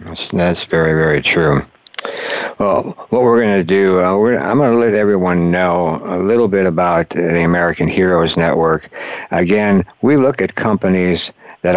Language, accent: English, American